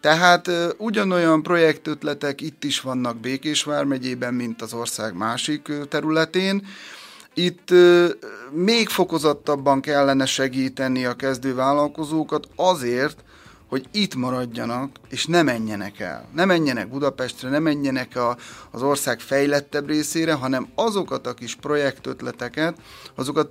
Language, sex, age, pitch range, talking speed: Hungarian, male, 30-49, 115-150 Hz, 115 wpm